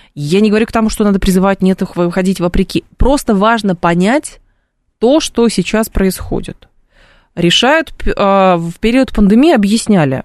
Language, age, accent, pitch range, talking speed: Russian, 20-39, native, 170-220 Hz, 135 wpm